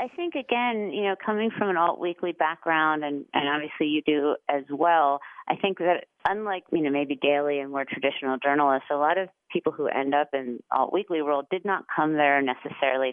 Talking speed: 210 wpm